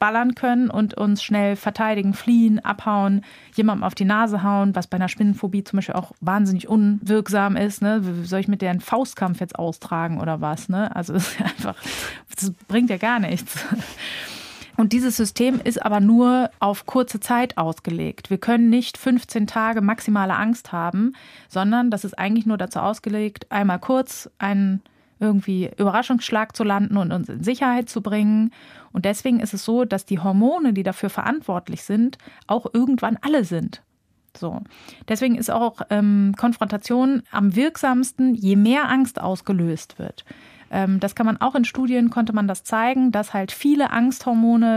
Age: 30-49